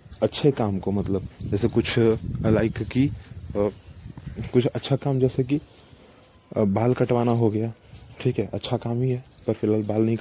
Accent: native